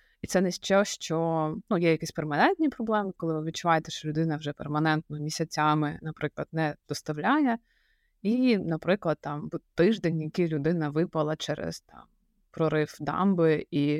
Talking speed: 145 wpm